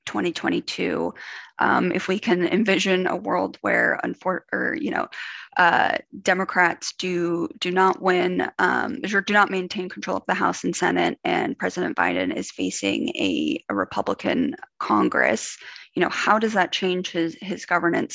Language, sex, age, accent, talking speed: English, female, 20-39, American, 160 wpm